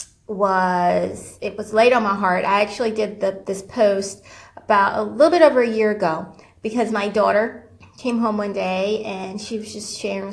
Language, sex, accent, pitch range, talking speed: English, female, American, 200-255 Hz, 190 wpm